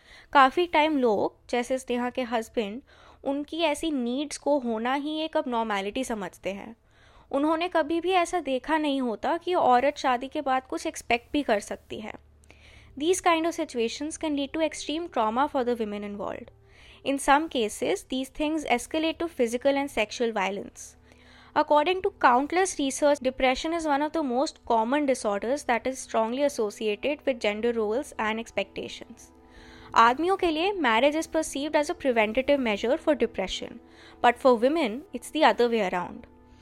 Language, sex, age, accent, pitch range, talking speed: Hindi, female, 20-39, native, 235-305 Hz, 165 wpm